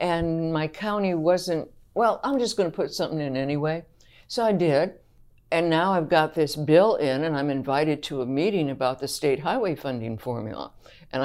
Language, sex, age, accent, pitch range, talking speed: English, female, 60-79, American, 125-160 Hz, 190 wpm